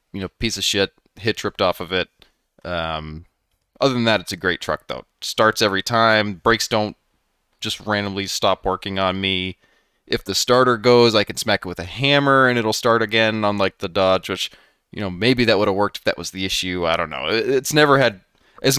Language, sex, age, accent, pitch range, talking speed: English, male, 20-39, American, 90-120 Hz, 220 wpm